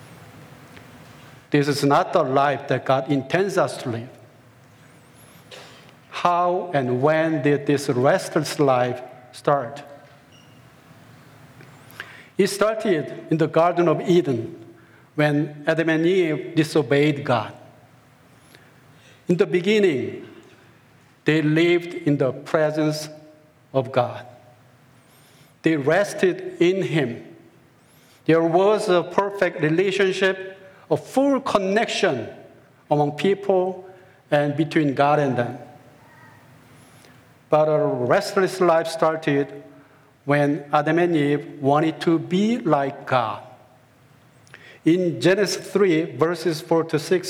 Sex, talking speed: male, 105 wpm